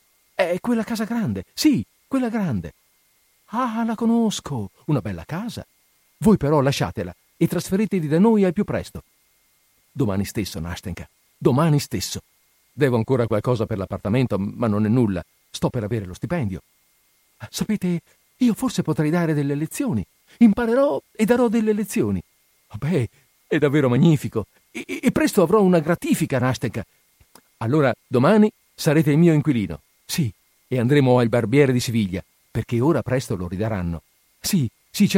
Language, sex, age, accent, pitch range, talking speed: Italian, male, 50-69, native, 105-175 Hz, 145 wpm